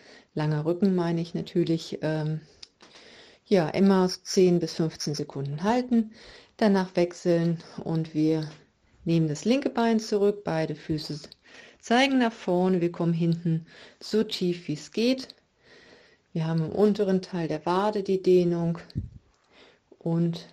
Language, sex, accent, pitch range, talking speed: German, female, German, 165-210 Hz, 130 wpm